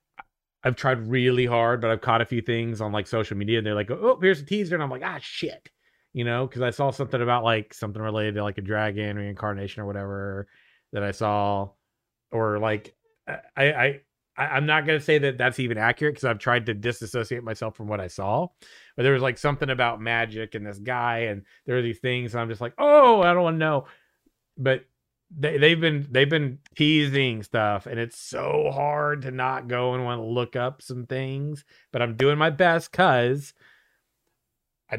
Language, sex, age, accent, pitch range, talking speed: English, male, 30-49, American, 115-150 Hz, 210 wpm